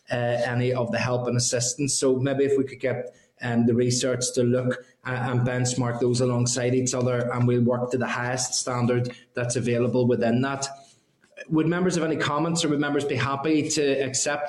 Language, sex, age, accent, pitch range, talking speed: English, male, 20-39, Irish, 125-135 Hz, 200 wpm